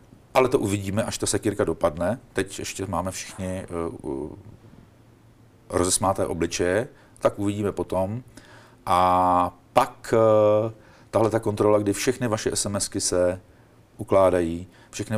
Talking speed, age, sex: 110 wpm, 40-59, male